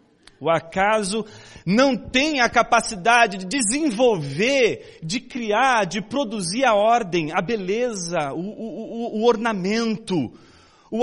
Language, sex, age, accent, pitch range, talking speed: Portuguese, male, 40-59, Brazilian, 180-245 Hz, 115 wpm